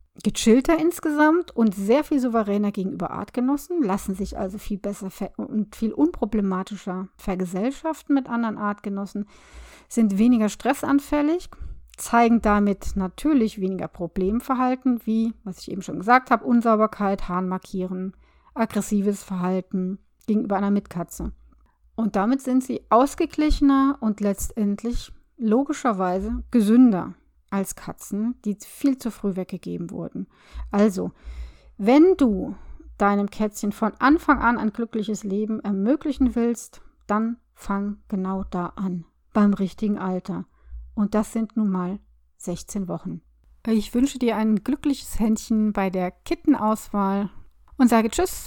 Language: German